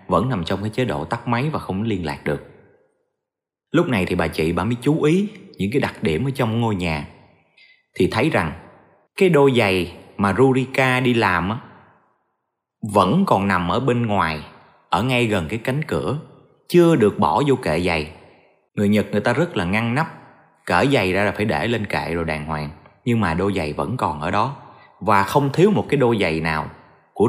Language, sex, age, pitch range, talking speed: Vietnamese, male, 20-39, 95-140 Hz, 210 wpm